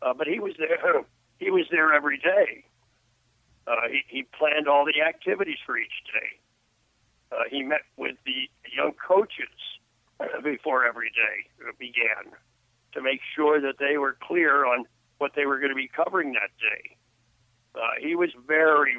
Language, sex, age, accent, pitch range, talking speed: English, male, 50-69, American, 125-170 Hz, 165 wpm